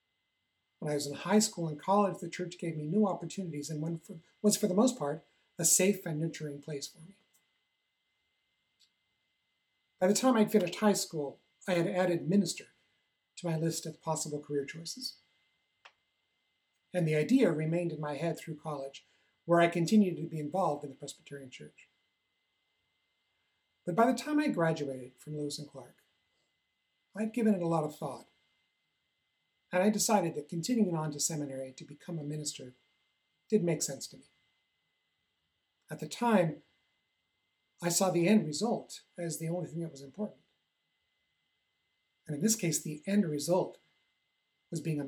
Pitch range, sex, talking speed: 150-190 Hz, male, 165 wpm